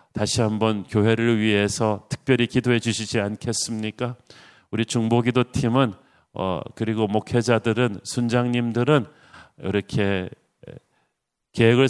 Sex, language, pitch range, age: male, Korean, 105-125 Hz, 40-59